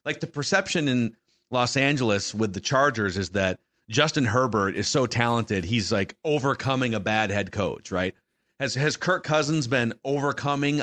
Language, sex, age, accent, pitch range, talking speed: English, male, 40-59, American, 105-140 Hz, 165 wpm